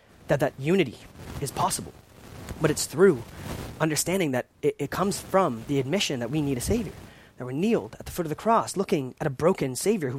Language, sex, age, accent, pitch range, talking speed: English, male, 30-49, American, 115-165 Hz, 210 wpm